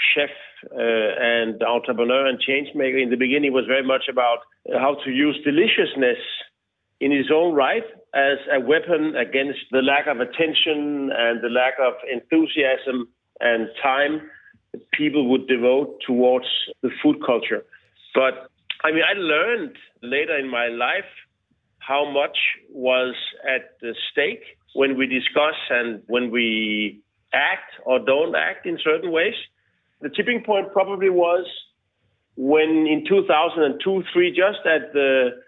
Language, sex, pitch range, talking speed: English, male, 125-155 Hz, 150 wpm